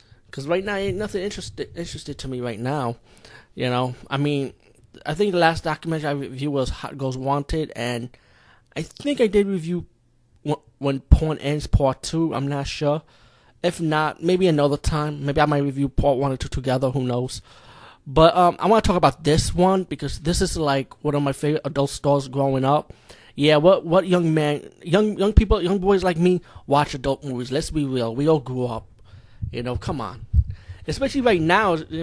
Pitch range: 125-155 Hz